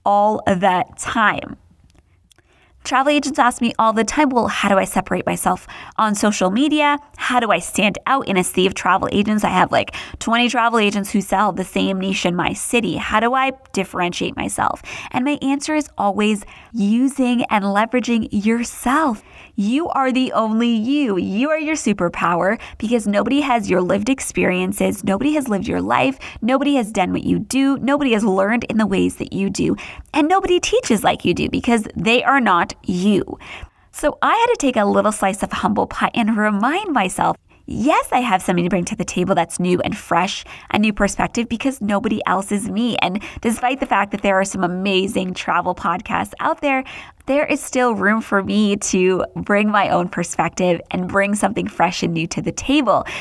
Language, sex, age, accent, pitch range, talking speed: English, female, 20-39, American, 190-255 Hz, 195 wpm